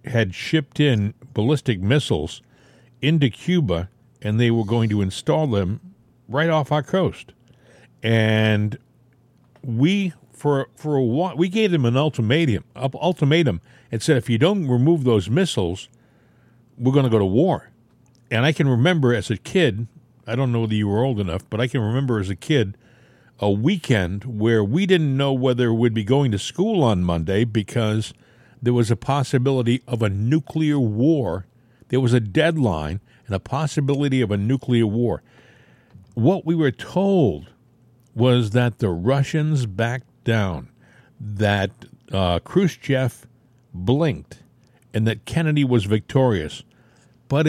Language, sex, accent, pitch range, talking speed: English, male, American, 110-145 Hz, 150 wpm